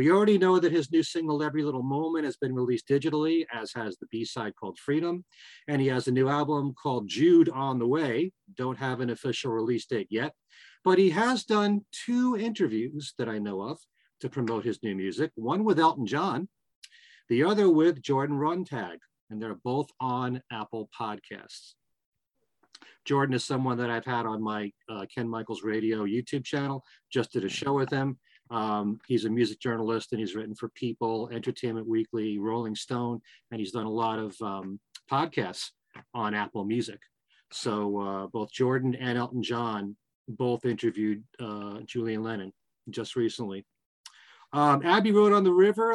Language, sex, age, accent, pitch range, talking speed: English, male, 40-59, American, 115-150 Hz, 175 wpm